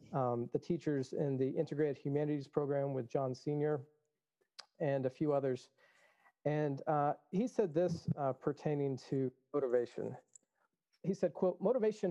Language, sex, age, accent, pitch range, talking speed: English, male, 40-59, American, 140-170 Hz, 140 wpm